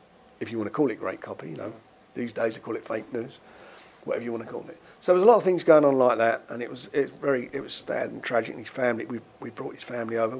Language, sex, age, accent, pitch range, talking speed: English, male, 50-69, British, 110-135 Hz, 310 wpm